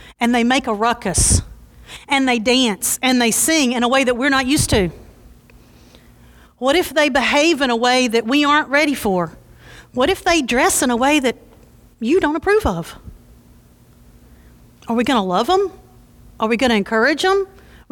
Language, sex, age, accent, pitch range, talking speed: English, female, 40-59, American, 195-320 Hz, 190 wpm